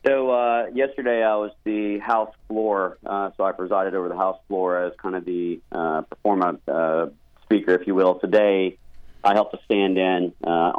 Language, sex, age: English, male, 40-59